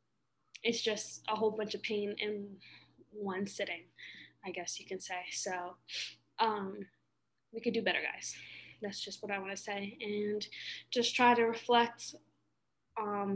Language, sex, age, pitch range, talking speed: English, female, 10-29, 195-225 Hz, 155 wpm